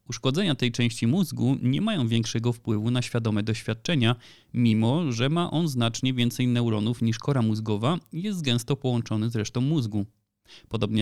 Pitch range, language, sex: 110-135 Hz, Polish, male